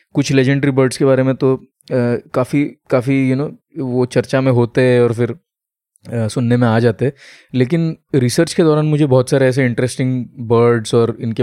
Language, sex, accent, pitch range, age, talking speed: Hindi, male, native, 120-160 Hz, 20-39, 200 wpm